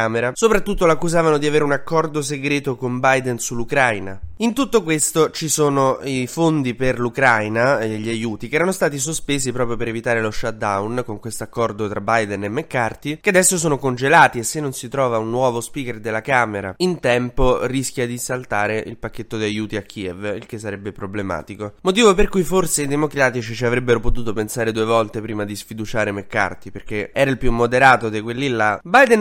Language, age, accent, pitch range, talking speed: Italian, 20-39, native, 115-145 Hz, 190 wpm